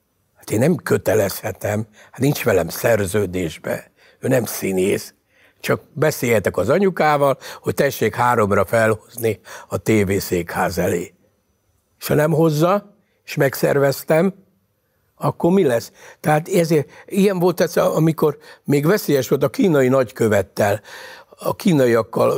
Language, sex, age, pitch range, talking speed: Hungarian, male, 60-79, 105-155 Hz, 120 wpm